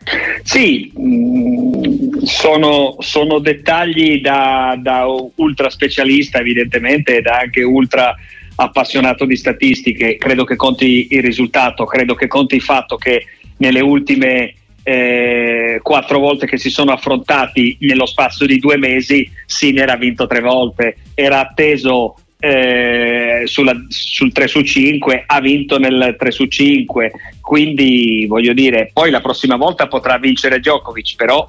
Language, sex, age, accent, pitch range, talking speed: Italian, male, 40-59, native, 125-155 Hz, 135 wpm